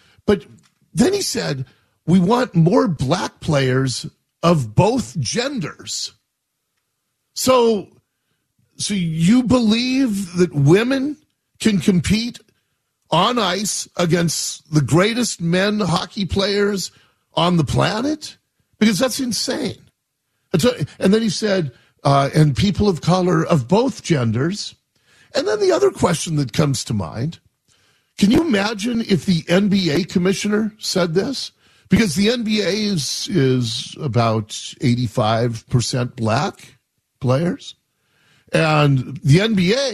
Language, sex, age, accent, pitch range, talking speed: English, male, 50-69, American, 140-200 Hz, 115 wpm